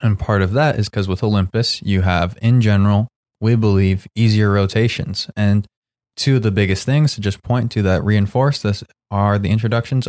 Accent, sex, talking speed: American, male, 190 wpm